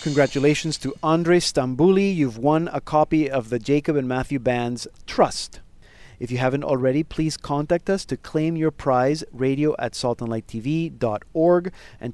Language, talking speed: English, 145 wpm